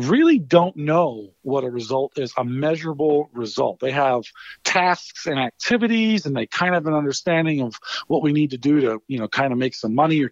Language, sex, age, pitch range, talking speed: English, male, 50-69, 125-155 Hz, 210 wpm